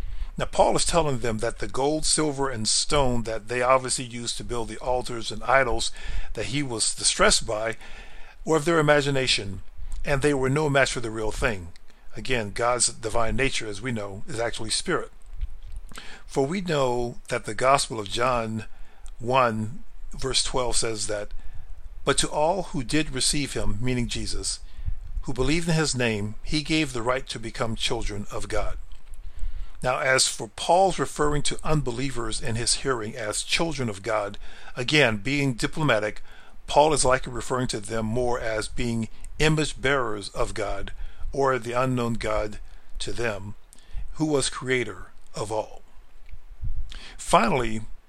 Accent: American